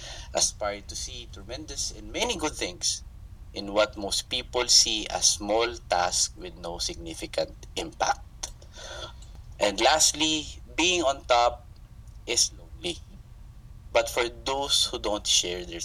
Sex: male